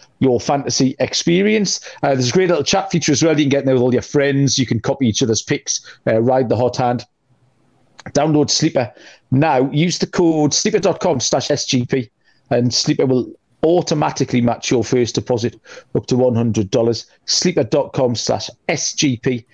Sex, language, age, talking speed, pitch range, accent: male, English, 40-59, 165 wpm, 120-150 Hz, British